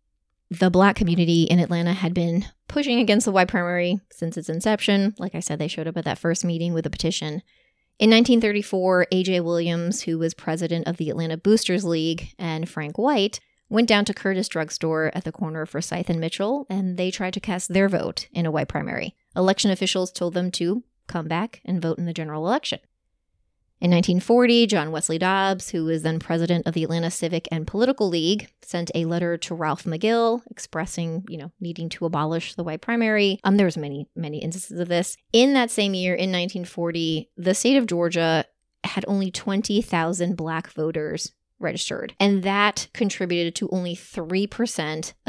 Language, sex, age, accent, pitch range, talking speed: English, female, 20-39, American, 165-200 Hz, 185 wpm